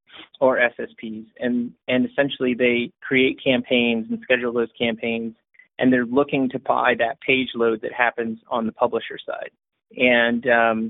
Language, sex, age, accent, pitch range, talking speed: English, male, 30-49, American, 115-130 Hz, 150 wpm